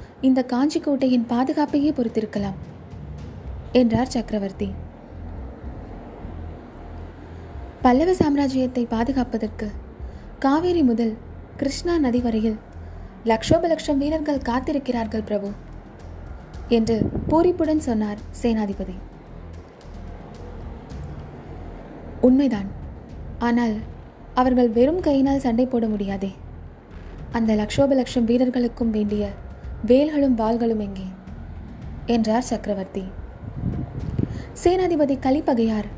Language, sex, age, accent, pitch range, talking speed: Tamil, female, 20-39, native, 190-260 Hz, 70 wpm